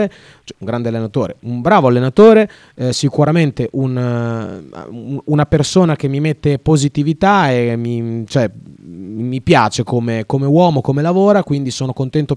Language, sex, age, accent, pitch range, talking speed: Italian, male, 30-49, native, 115-150 Hz, 135 wpm